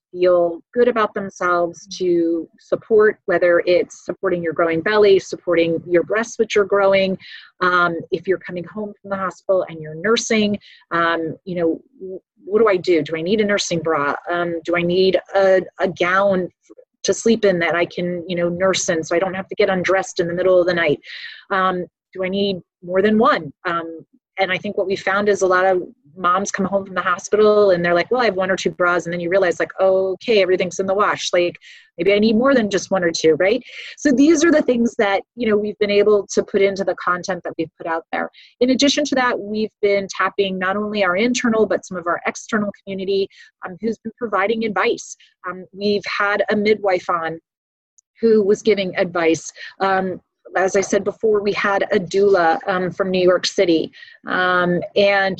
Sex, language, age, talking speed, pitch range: female, English, 30-49, 210 wpm, 180-210 Hz